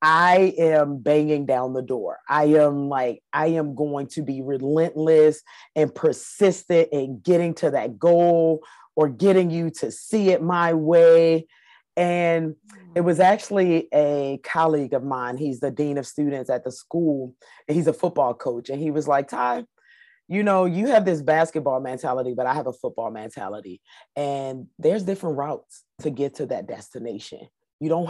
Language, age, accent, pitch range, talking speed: English, 30-49, American, 140-175 Hz, 170 wpm